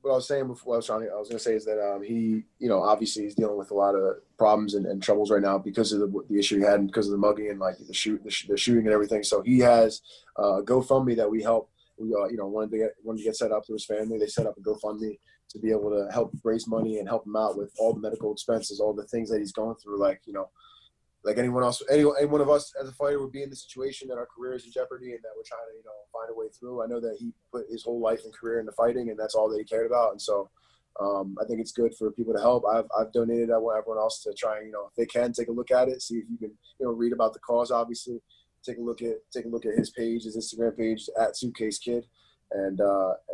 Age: 20-39